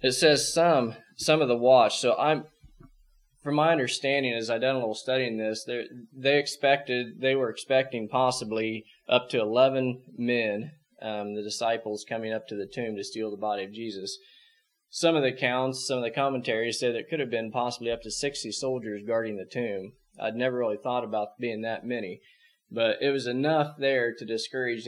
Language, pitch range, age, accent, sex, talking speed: English, 110-140 Hz, 20-39, American, male, 190 wpm